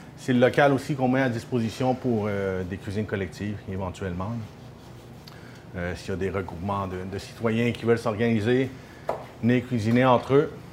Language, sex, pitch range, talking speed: French, male, 110-140 Hz, 170 wpm